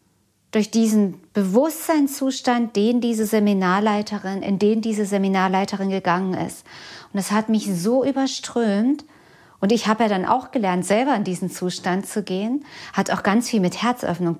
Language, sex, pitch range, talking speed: German, female, 190-240 Hz, 155 wpm